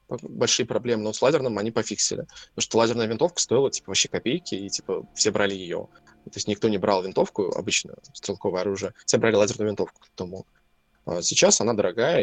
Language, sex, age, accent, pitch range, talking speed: Russian, male, 20-39, native, 105-155 Hz, 190 wpm